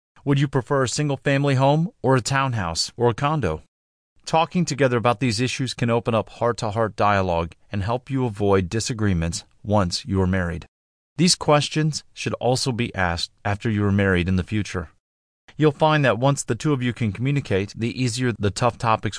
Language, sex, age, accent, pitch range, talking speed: English, male, 30-49, American, 95-130 Hz, 185 wpm